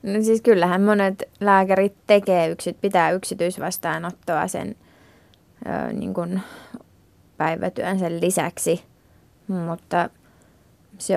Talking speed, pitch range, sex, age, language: 60 wpm, 170-200 Hz, female, 20-39, Finnish